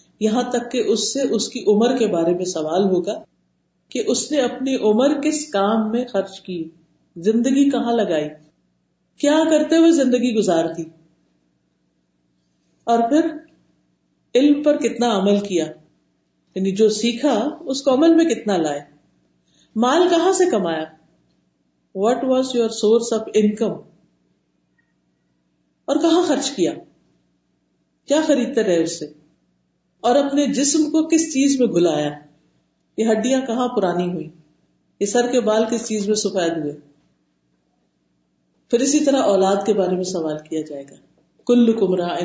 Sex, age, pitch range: female, 50-69, 155-235 Hz